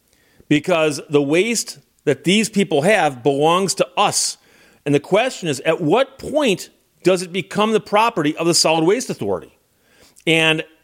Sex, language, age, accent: male, English, 40-59, American